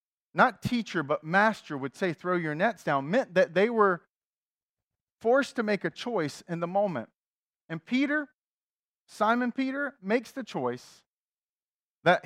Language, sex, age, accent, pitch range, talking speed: English, male, 40-59, American, 160-220 Hz, 145 wpm